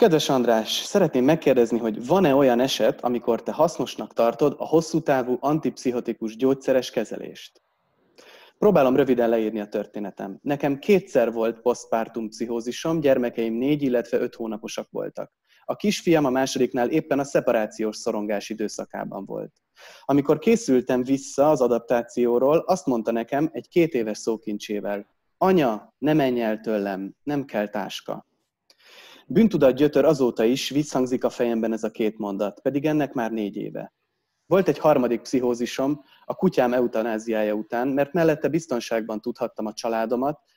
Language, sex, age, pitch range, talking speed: Hungarian, male, 30-49, 110-140 Hz, 140 wpm